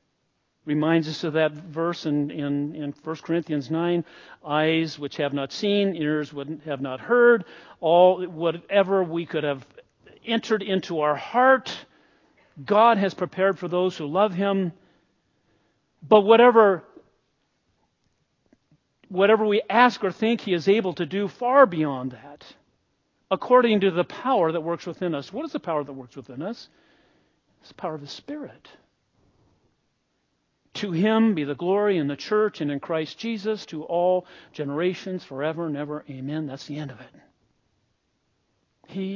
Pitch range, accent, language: 150-205 Hz, American, English